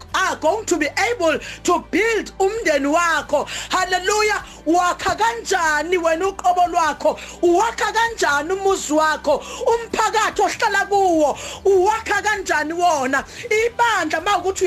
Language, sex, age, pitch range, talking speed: English, female, 40-59, 335-410 Hz, 105 wpm